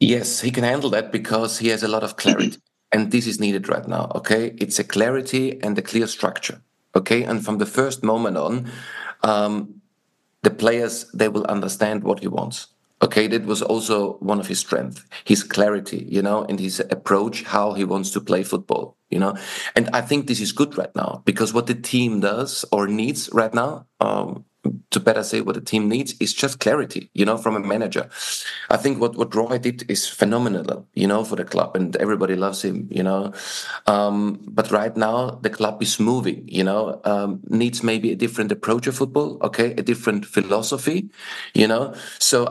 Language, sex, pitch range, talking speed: English, male, 105-120 Hz, 200 wpm